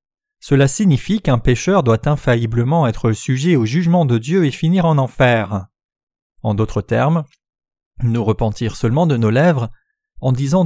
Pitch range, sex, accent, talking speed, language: 120-170 Hz, male, French, 150 wpm, French